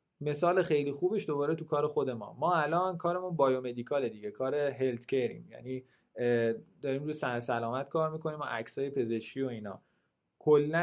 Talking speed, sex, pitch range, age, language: 160 wpm, male, 125-170 Hz, 30-49, Persian